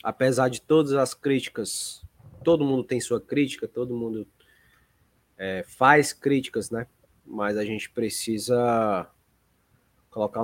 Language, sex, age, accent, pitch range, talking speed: Portuguese, male, 20-39, Brazilian, 110-145 Hz, 120 wpm